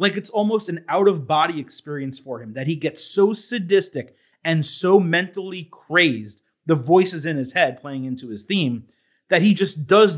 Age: 30-49